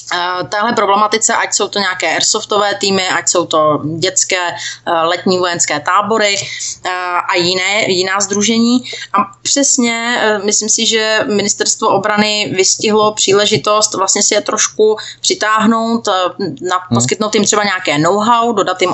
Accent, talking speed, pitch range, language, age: native, 125 wpm, 180-220 Hz, Czech, 30-49